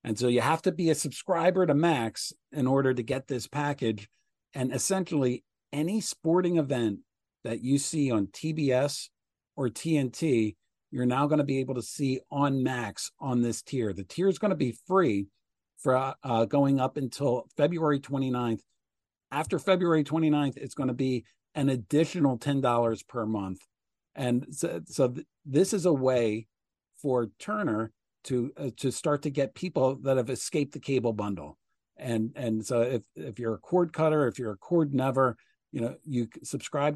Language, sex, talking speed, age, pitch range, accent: English, male, 175 wpm, 50-69, 115-145 Hz, American